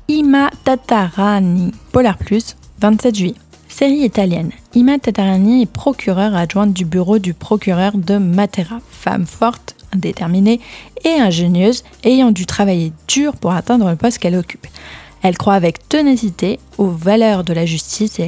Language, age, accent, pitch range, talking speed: French, 20-39, French, 180-235 Hz, 145 wpm